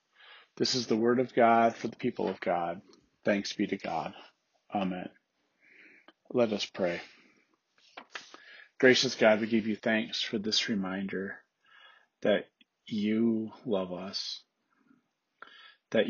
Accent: American